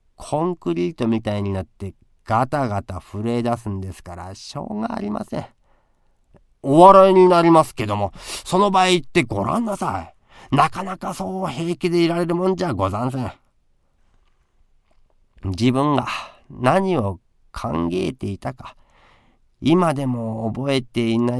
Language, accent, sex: Japanese, native, male